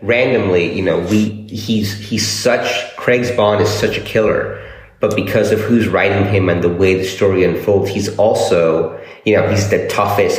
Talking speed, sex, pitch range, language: 185 wpm, male, 95-110 Hz, English